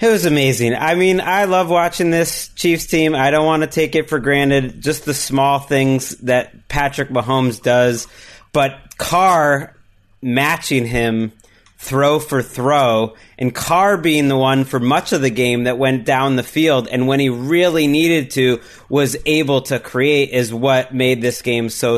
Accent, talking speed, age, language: American, 175 wpm, 30-49, English